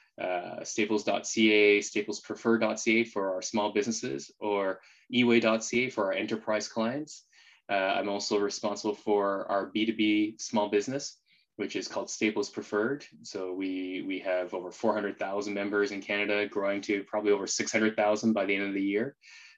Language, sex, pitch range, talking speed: English, male, 100-110 Hz, 145 wpm